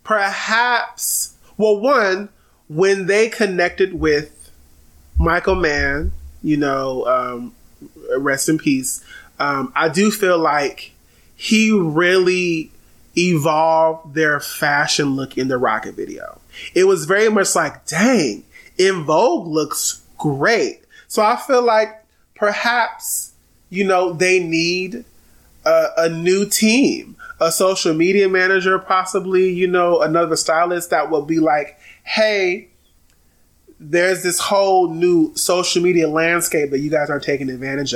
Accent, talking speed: American, 125 wpm